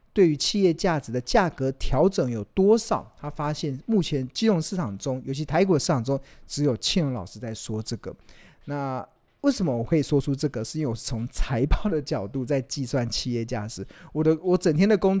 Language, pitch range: Chinese, 125-165 Hz